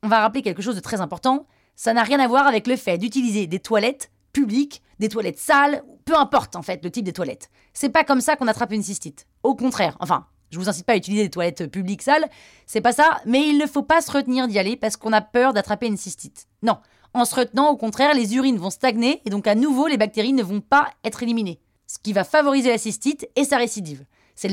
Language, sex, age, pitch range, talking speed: French, female, 20-39, 200-270 Hz, 250 wpm